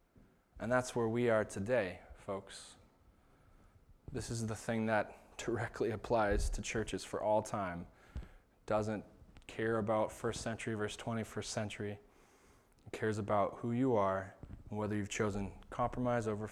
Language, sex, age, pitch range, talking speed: English, male, 20-39, 105-150 Hz, 140 wpm